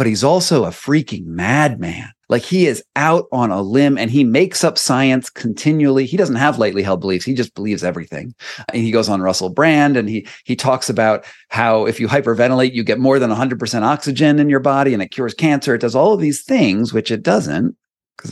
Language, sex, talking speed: English, male, 220 wpm